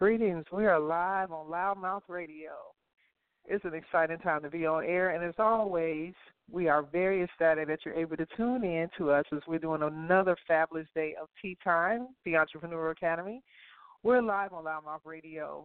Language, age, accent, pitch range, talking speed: English, 40-59, American, 160-190 Hz, 180 wpm